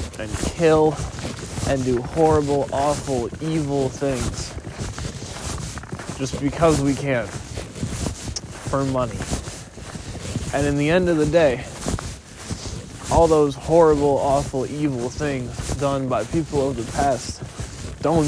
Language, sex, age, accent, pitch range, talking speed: English, male, 20-39, American, 125-155 Hz, 110 wpm